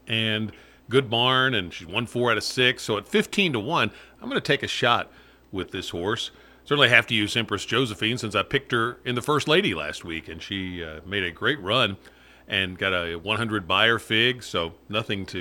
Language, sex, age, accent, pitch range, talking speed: English, male, 50-69, American, 100-125 Hz, 220 wpm